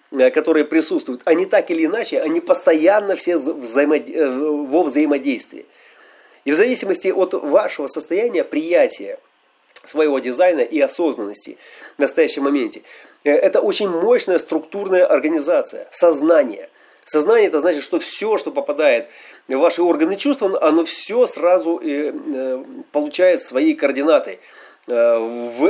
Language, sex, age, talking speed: Russian, male, 30-49, 115 wpm